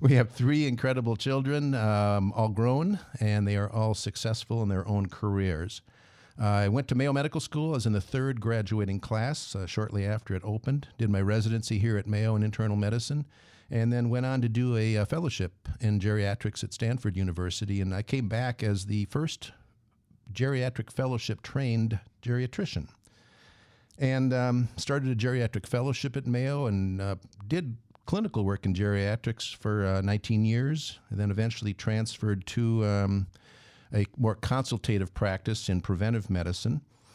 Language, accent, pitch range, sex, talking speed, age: English, American, 100-125 Hz, male, 165 wpm, 50-69